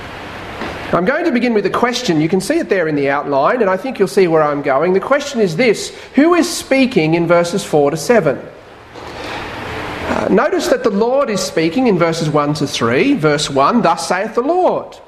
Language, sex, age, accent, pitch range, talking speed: English, male, 40-59, Australian, 165-235 Hz, 205 wpm